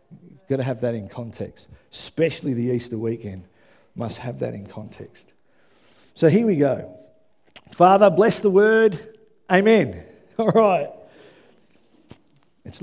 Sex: male